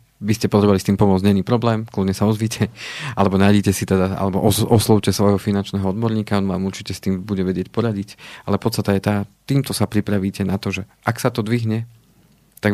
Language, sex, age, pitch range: Slovak, male, 40-59, 100-110 Hz